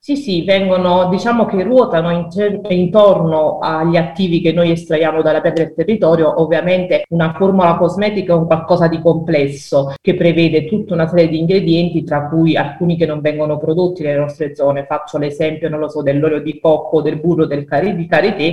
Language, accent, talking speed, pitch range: Italian, native, 180 wpm, 155-185 Hz